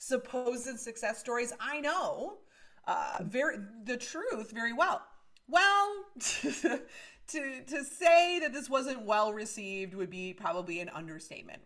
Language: English